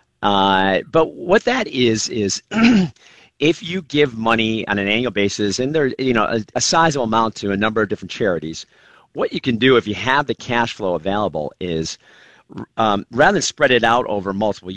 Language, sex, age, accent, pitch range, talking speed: English, male, 50-69, American, 100-130 Hz, 195 wpm